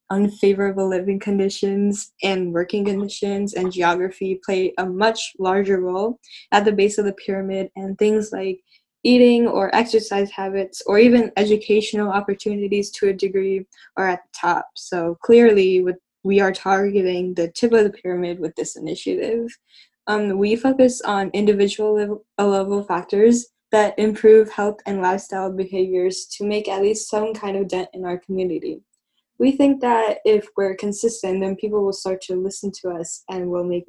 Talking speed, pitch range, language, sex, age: 165 wpm, 190-215 Hz, English, female, 10-29